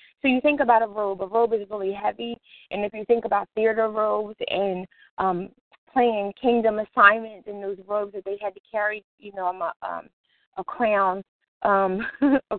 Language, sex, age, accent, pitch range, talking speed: English, female, 20-39, American, 200-230 Hz, 175 wpm